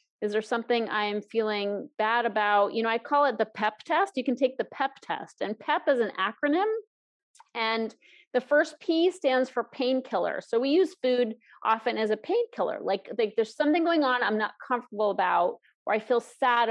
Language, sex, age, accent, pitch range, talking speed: English, female, 40-59, American, 215-280 Hz, 200 wpm